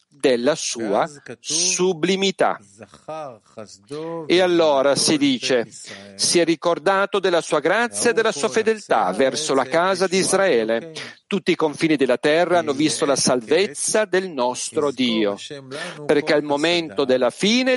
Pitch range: 135-195 Hz